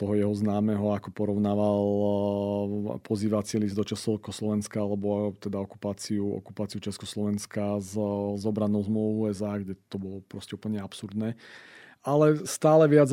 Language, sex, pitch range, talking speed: Slovak, male, 105-115 Hz, 130 wpm